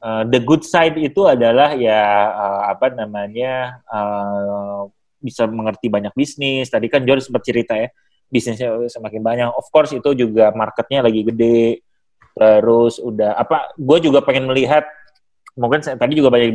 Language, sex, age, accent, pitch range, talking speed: Indonesian, male, 30-49, native, 110-145 Hz, 150 wpm